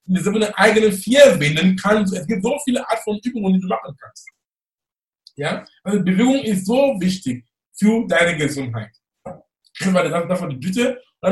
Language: German